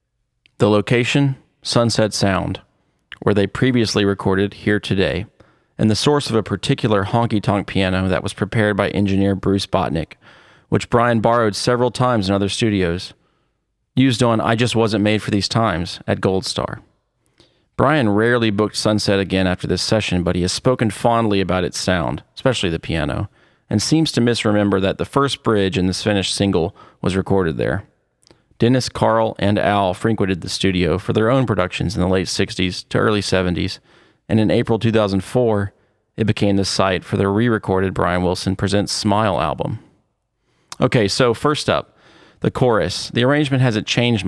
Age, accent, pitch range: 30-49, American, 95-115 Hz